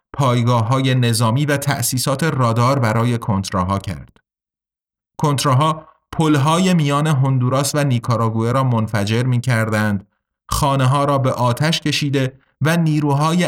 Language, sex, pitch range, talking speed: Persian, male, 115-145 Hz, 110 wpm